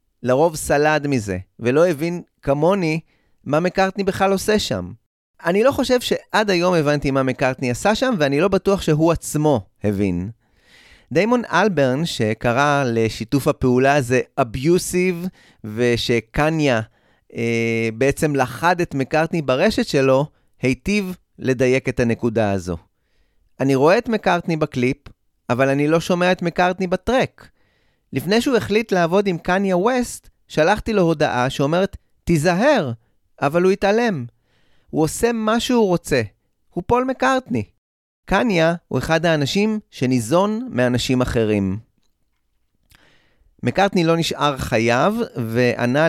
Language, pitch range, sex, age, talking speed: Hebrew, 120-185 Hz, male, 30-49, 120 wpm